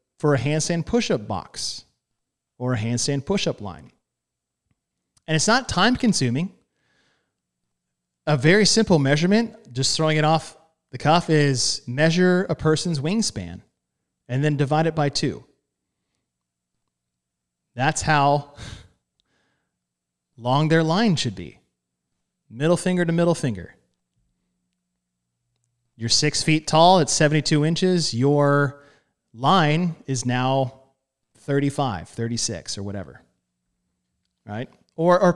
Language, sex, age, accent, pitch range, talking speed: English, male, 30-49, American, 115-180 Hz, 110 wpm